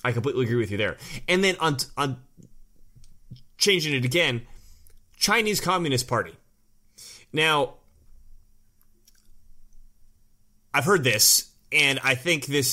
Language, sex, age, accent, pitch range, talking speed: English, male, 30-49, American, 110-140 Hz, 115 wpm